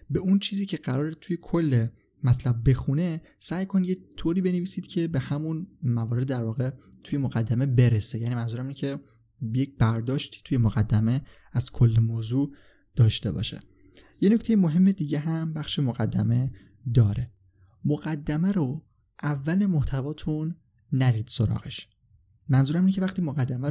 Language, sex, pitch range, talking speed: Persian, male, 120-160 Hz, 140 wpm